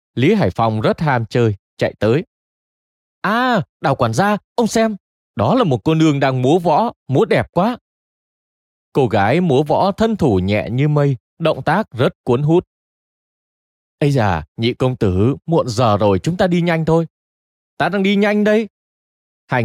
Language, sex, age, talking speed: Vietnamese, male, 20-39, 175 wpm